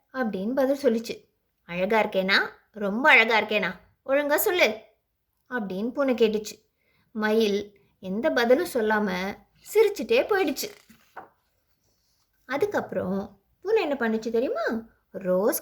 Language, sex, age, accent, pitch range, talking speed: Tamil, female, 20-39, native, 210-290 Hz, 95 wpm